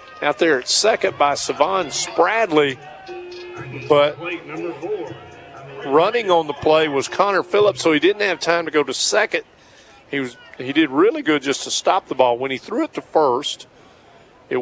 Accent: American